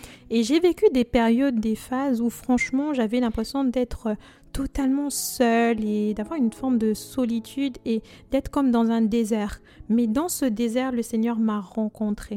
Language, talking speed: French, 165 wpm